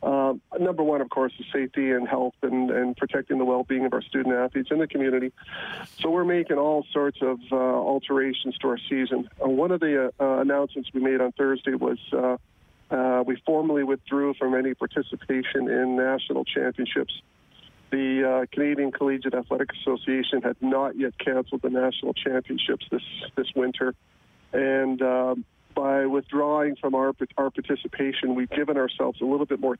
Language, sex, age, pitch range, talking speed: English, male, 40-59, 130-140 Hz, 175 wpm